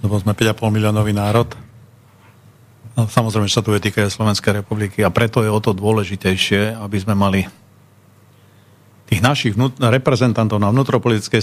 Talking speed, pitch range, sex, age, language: 160 wpm, 100-120 Hz, male, 50-69, Slovak